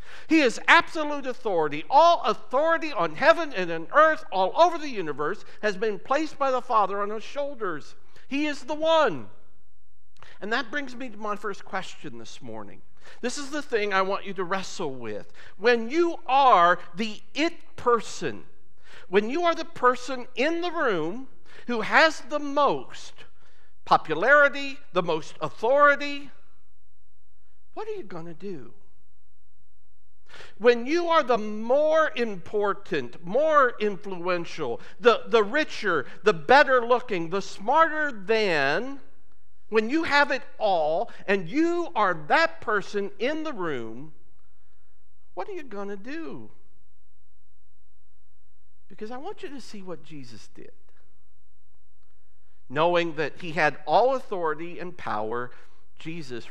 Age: 60-79